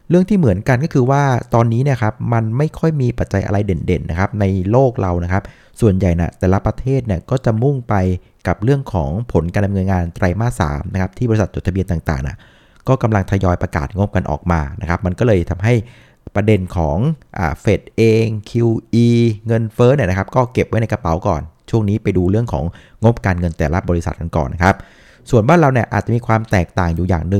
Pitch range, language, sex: 95-120 Hz, Thai, male